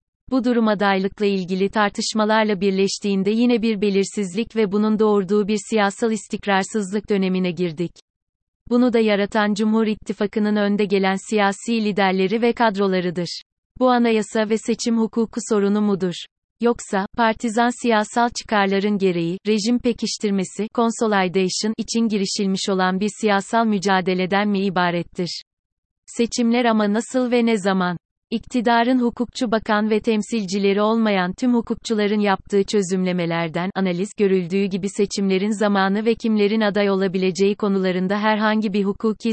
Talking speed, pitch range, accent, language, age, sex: 120 wpm, 195-225 Hz, native, Turkish, 30-49, female